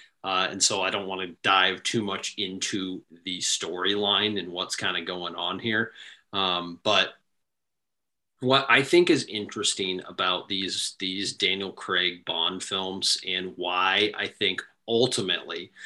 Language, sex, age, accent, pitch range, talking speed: English, male, 30-49, American, 95-130 Hz, 150 wpm